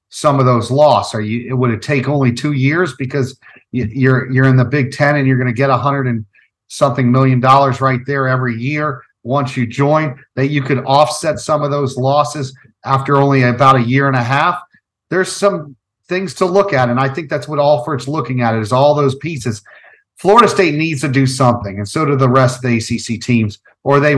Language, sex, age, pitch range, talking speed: English, male, 40-59, 120-145 Hz, 220 wpm